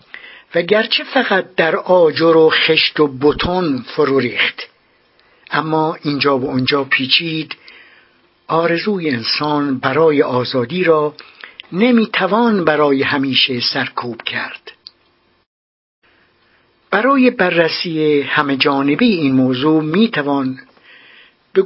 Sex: male